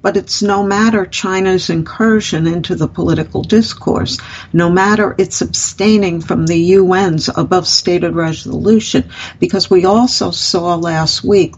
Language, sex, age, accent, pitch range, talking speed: English, female, 60-79, American, 165-205 Hz, 130 wpm